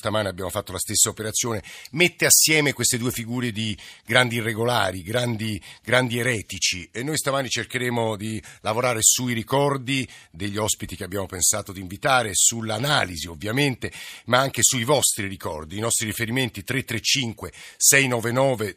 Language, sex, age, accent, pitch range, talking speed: Italian, male, 50-69, native, 105-130 Hz, 140 wpm